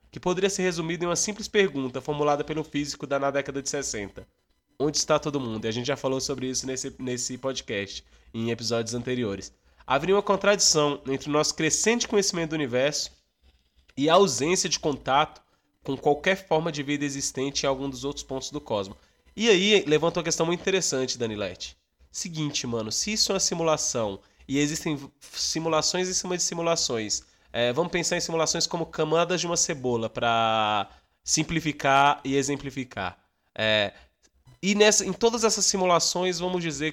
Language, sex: Portuguese, male